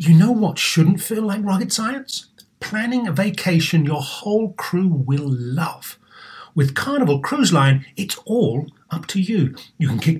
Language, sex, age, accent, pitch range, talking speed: English, male, 40-59, British, 140-205 Hz, 165 wpm